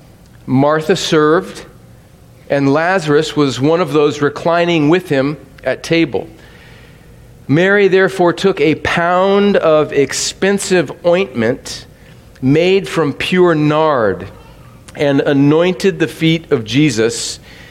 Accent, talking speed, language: American, 105 wpm, English